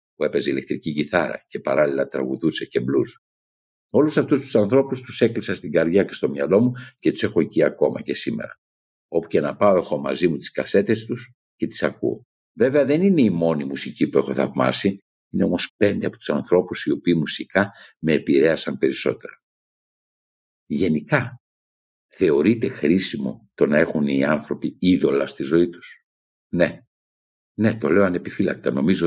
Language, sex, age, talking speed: Greek, male, 60-79, 165 wpm